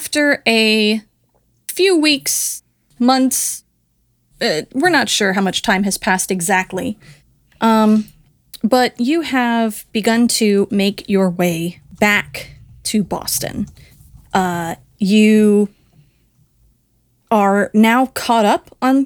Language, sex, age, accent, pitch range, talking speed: English, female, 30-49, American, 185-245 Hz, 105 wpm